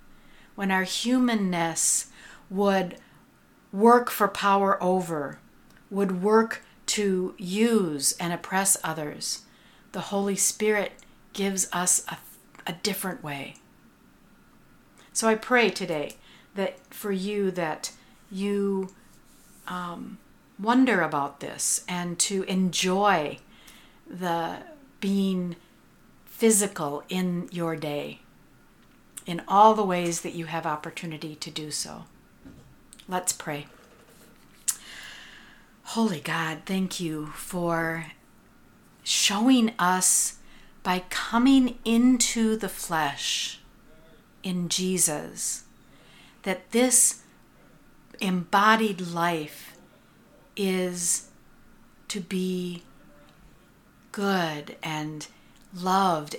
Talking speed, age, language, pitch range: 90 wpm, 50-69, English, 170-210 Hz